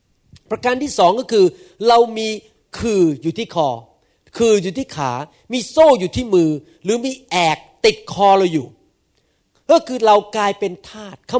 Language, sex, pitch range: Thai, male, 190-250 Hz